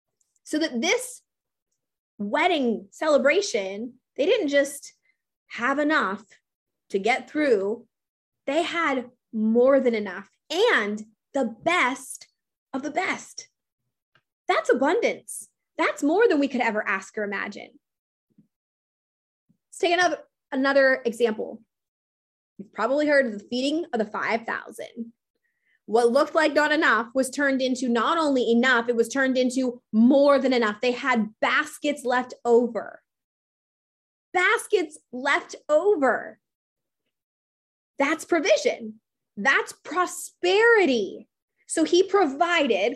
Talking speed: 115 wpm